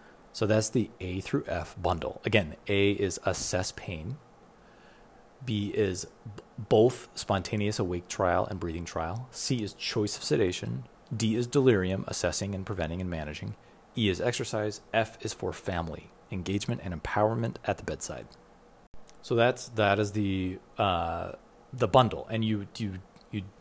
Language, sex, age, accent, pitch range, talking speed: English, male, 30-49, American, 90-110 Hz, 150 wpm